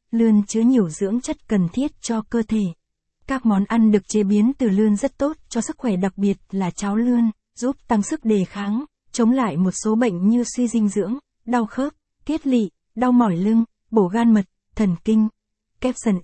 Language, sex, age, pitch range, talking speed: Vietnamese, female, 20-39, 200-235 Hz, 205 wpm